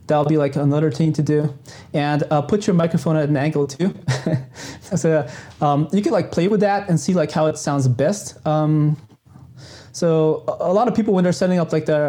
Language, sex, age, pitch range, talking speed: English, male, 20-39, 140-160 Hz, 215 wpm